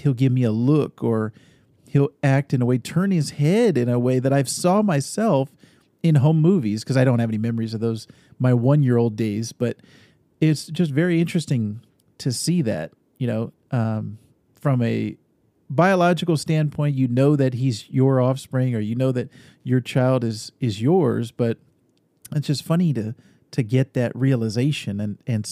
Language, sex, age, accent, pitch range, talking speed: English, male, 40-59, American, 120-155 Hz, 180 wpm